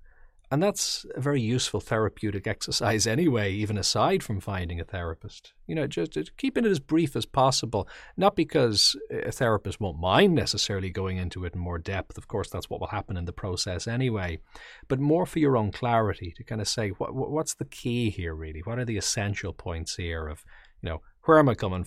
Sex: male